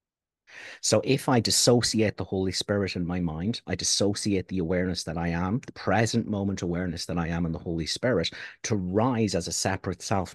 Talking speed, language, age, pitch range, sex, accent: 195 wpm, English, 50-69, 90-115 Hz, male, British